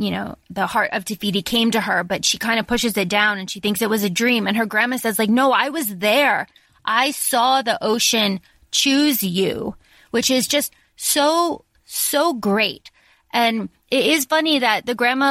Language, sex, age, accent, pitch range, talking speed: English, female, 20-39, American, 210-255 Hz, 200 wpm